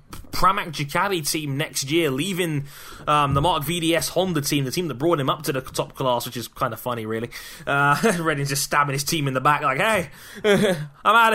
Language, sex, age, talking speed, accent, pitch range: English, male, 10-29, 215 wpm, British, 140-175 Hz